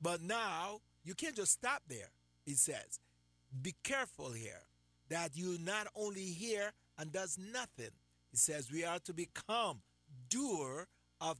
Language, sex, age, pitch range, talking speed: English, male, 50-69, 140-220 Hz, 145 wpm